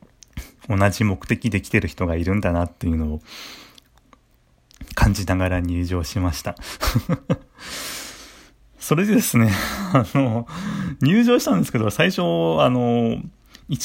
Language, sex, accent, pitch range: Japanese, male, native, 85-120 Hz